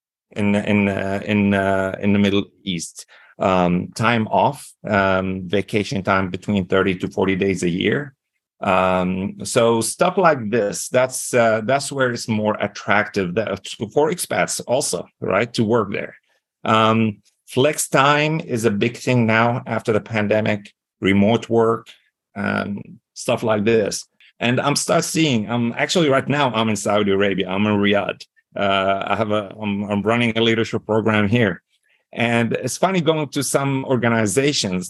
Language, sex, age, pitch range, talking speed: English, male, 40-59, 100-135 Hz, 155 wpm